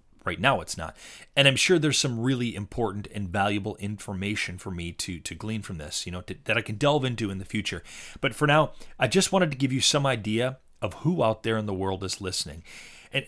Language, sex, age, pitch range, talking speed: English, male, 30-49, 105-145 Hz, 235 wpm